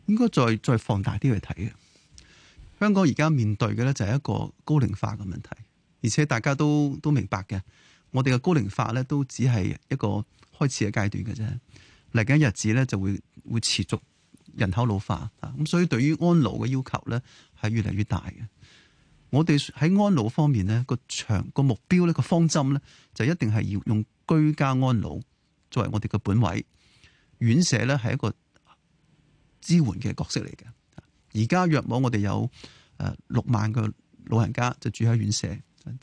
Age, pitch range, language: 20-39, 105-140 Hz, Chinese